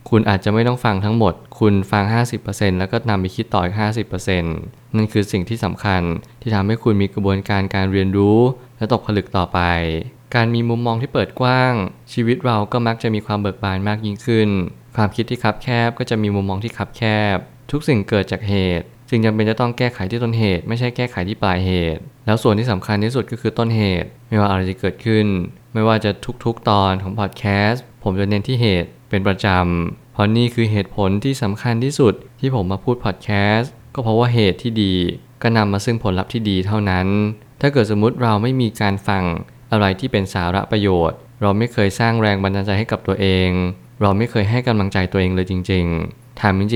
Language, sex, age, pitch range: Thai, male, 20-39, 95-115 Hz